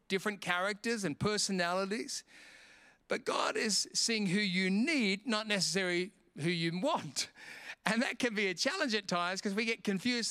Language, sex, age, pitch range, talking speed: English, male, 50-69, 180-220 Hz, 165 wpm